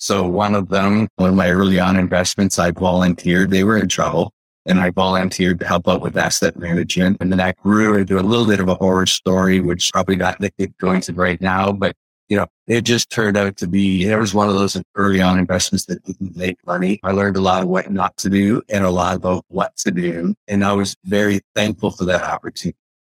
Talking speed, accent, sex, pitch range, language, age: 235 wpm, American, male, 95-105 Hz, English, 50-69